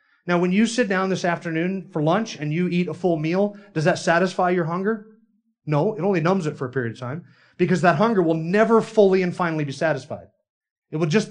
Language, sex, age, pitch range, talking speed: English, male, 30-49, 145-200 Hz, 230 wpm